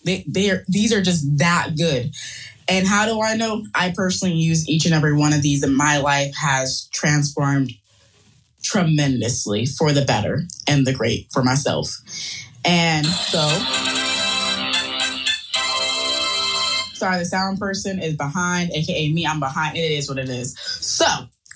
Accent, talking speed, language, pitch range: American, 150 wpm, English, 135-185 Hz